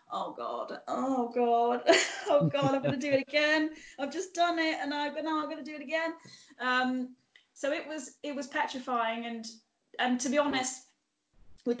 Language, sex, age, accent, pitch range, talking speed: English, female, 10-29, British, 220-260 Hz, 190 wpm